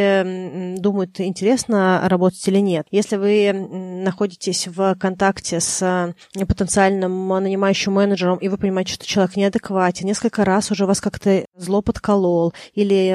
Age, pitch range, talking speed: 20-39, 185-205 Hz, 130 wpm